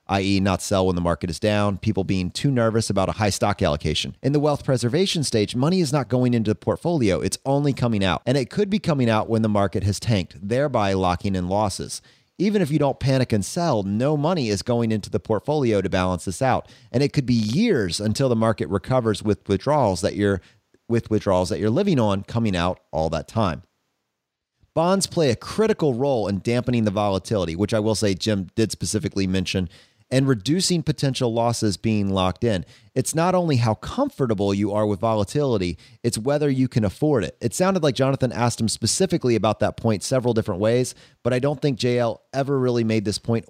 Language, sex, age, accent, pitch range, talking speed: English, male, 30-49, American, 100-135 Hz, 205 wpm